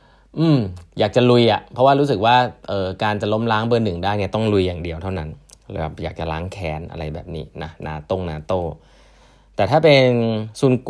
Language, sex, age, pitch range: Thai, male, 20-39, 85-115 Hz